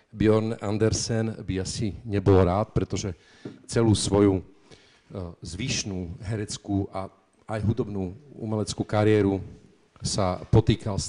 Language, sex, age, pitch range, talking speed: Slovak, male, 40-59, 95-110 Hz, 105 wpm